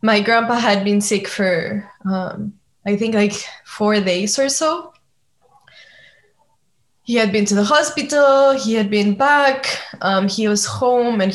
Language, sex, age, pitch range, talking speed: English, female, 20-39, 195-225 Hz, 155 wpm